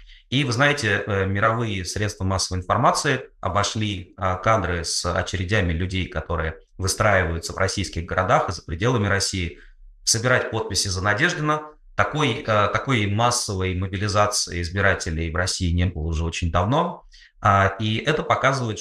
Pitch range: 90-115 Hz